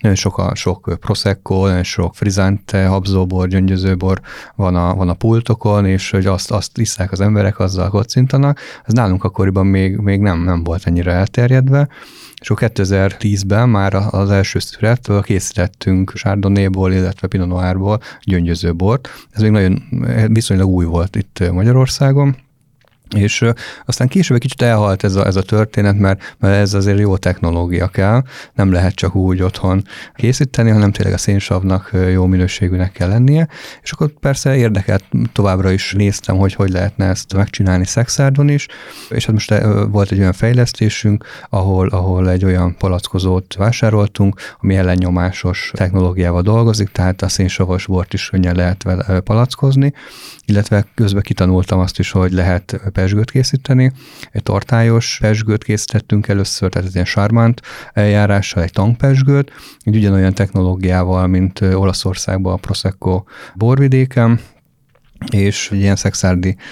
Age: 30-49